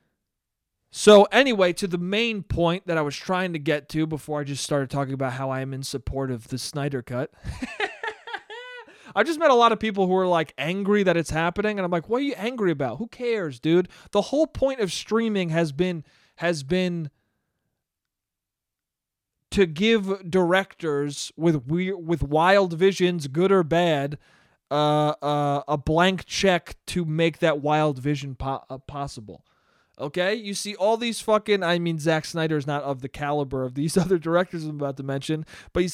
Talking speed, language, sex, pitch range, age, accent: 185 wpm, English, male, 150-195 Hz, 20-39, American